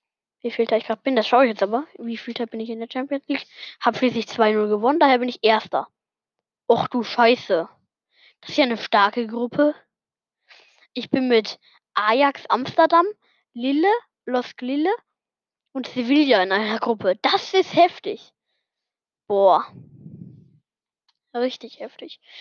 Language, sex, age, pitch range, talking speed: German, female, 10-29, 220-275 Hz, 145 wpm